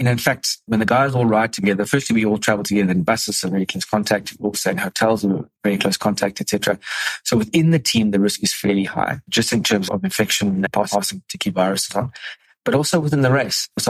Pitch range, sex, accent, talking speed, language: 100-125 Hz, male, South African, 240 wpm, English